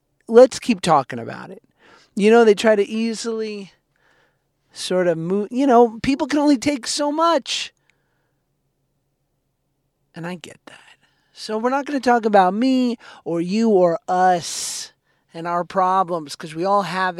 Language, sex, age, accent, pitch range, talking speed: English, male, 40-59, American, 170-240 Hz, 155 wpm